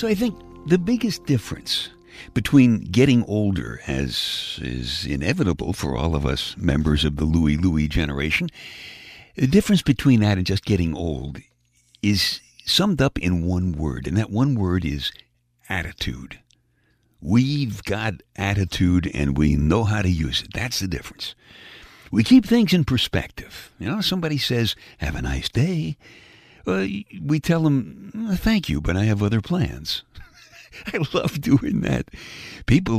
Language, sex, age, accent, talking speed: English, male, 60-79, American, 155 wpm